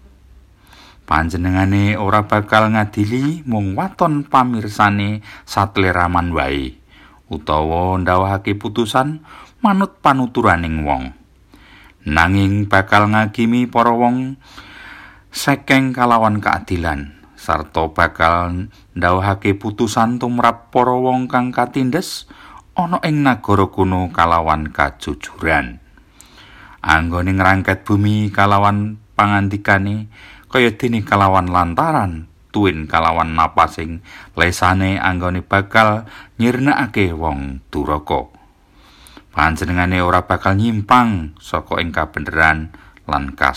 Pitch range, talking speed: 85-110 Hz, 90 wpm